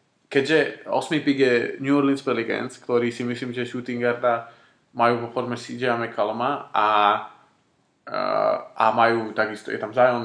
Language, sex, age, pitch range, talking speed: Slovak, male, 20-39, 120-135 Hz, 140 wpm